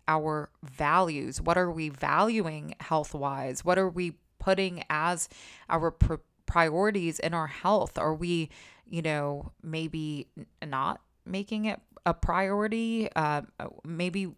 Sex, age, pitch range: female, 20-39, 155-190 Hz